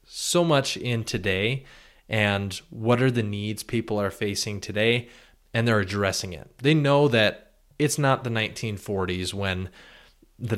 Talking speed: 145 wpm